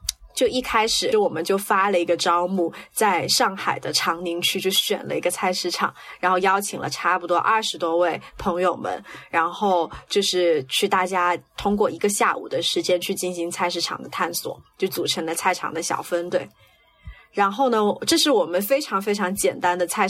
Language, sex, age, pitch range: Chinese, female, 20-39, 175-210 Hz